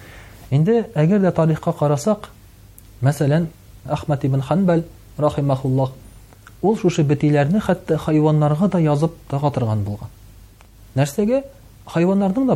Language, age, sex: Russian, 40-59, male